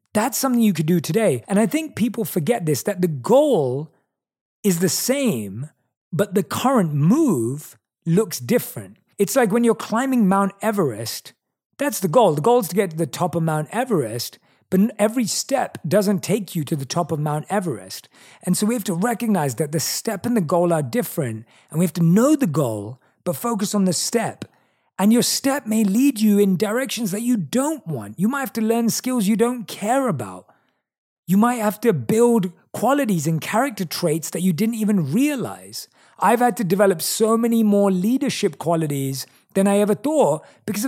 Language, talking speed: English, 195 wpm